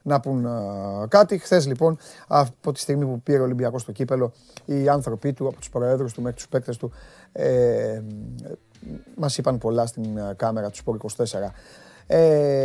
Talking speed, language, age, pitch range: 155 wpm, Greek, 30-49, 115-145 Hz